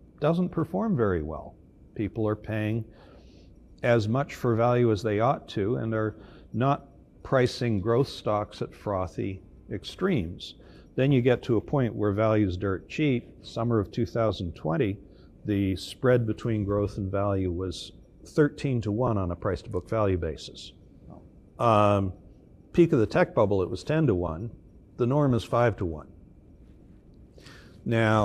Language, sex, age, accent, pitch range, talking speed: English, male, 60-79, American, 95-120 Hz, 150 wpm